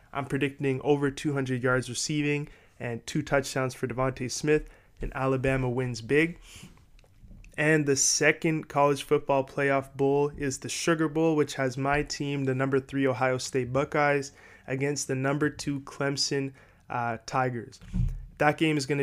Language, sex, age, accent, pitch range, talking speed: English, male, 20-39, American, 130-145 Hz, 150 wpm